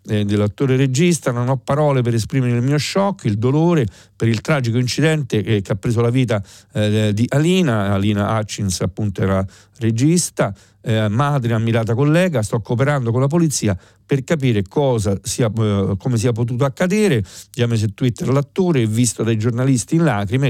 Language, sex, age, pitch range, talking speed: Italian, male, 50-69, 110-145 Hz, 165 wpm